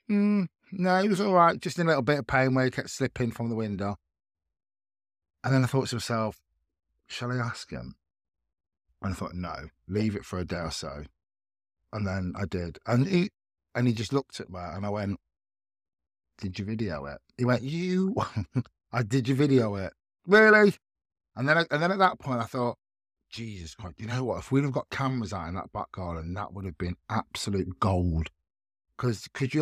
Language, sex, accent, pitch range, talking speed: English, male, British, 90-135 Hz, 210 wpm